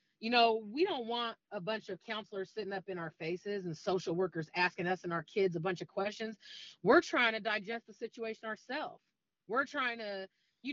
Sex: female